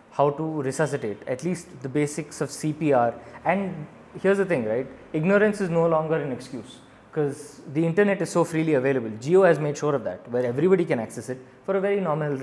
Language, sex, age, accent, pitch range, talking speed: English, male, 20-39, Indian, 135-165 Hz, 205 wpm